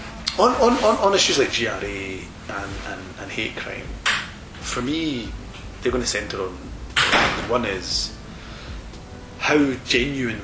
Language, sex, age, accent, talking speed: English, male, 30-49, British, 130 wpm